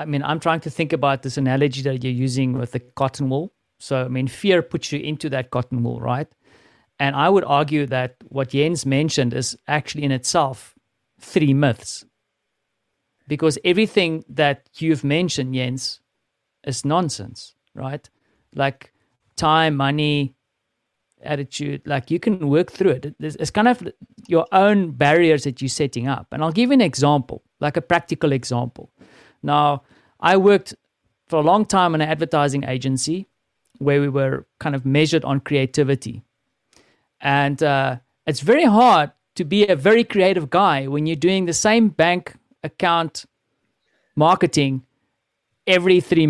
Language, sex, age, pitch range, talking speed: English, male, 50-69, 135-170 Hz, 155 wpm